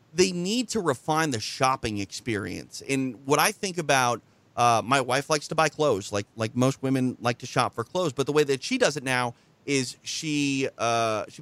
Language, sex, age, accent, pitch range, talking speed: English, male, 30-49, American, 125-160 Hz, 210 wpm